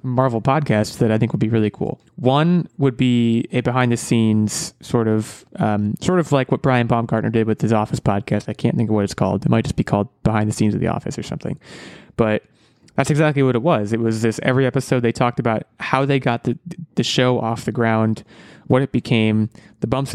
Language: English